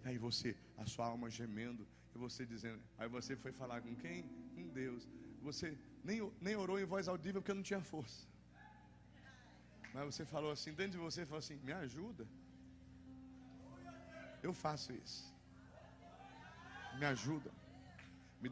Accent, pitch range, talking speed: Brazilian, 115-155 Hz, 150 wpm